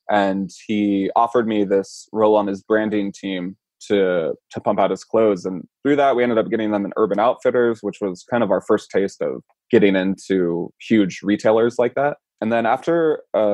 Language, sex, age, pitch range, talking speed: English, male, 20-39, 100-115 Hz, 200 wpm